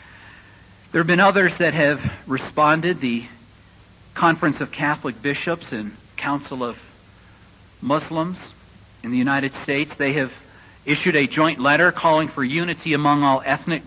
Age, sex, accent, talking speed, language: 50-69, male, American, 140 wpm, English